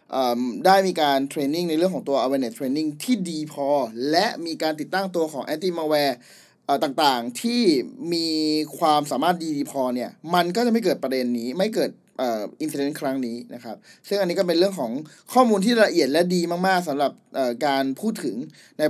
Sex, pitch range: male, 130-180 Hz